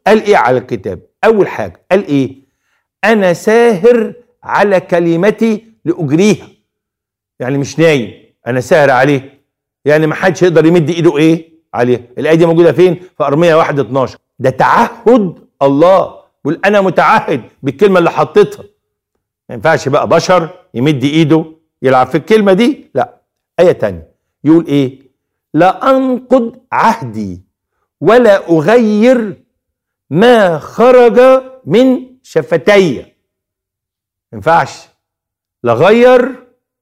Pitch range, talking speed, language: 135-195 Hz, 115 wpm, Arabic